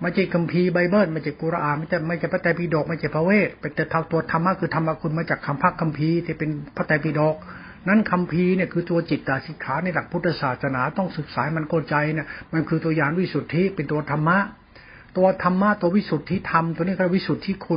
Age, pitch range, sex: 60-79, 150-175 Hz, male